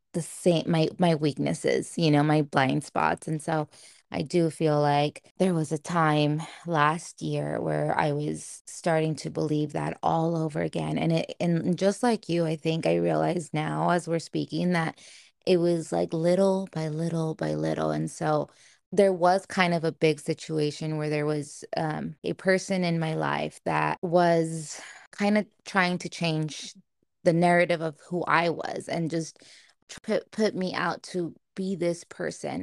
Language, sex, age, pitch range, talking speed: English, female, 20-39, 155-190 Hz, 175 wpm